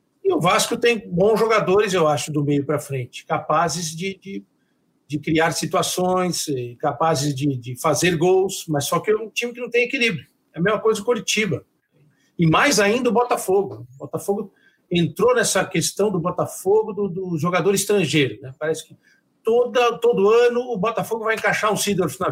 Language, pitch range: Portuguese, 155-205 Hz